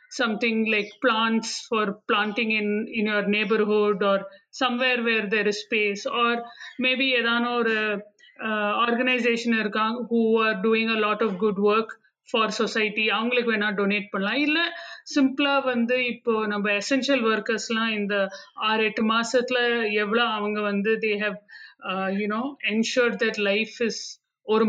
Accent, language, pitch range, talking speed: native, Tamil, 210-245 Hz, 155 wpm